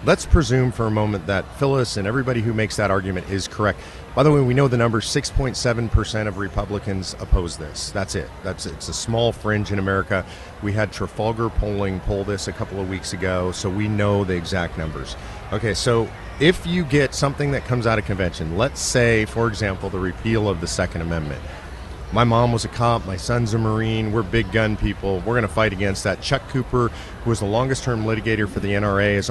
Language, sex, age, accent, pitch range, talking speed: English, male, 40-59, American, 95-120 Hz, 215 wpm